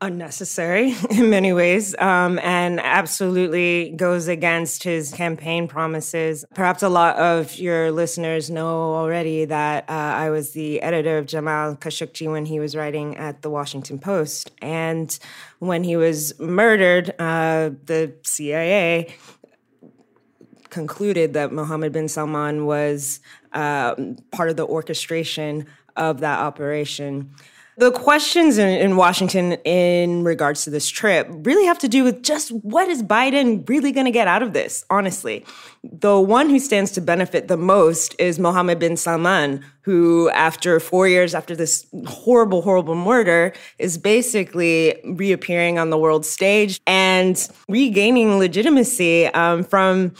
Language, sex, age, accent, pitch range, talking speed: English, female, 20-39, American, 155-190 Hz, 140 wpm